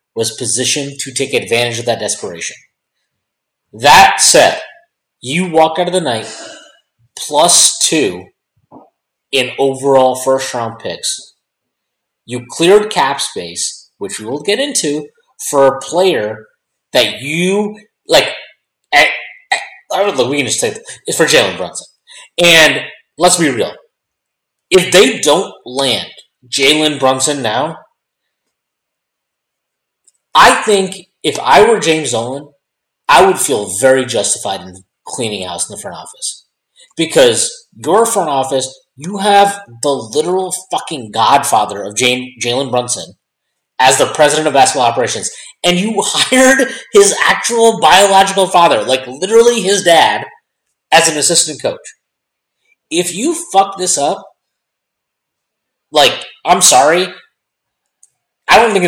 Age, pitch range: 30-49, 130-200 Hz